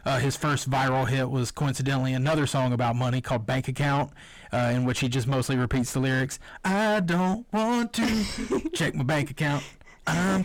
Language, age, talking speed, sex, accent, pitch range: English, 30-49, 185 wpm, male, American, 130-145 Hz